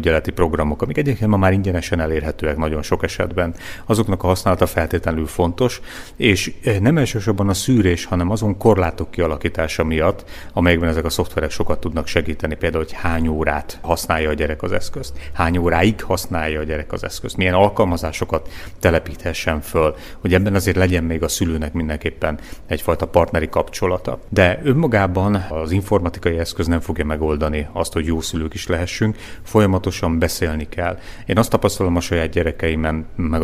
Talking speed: 155 wpm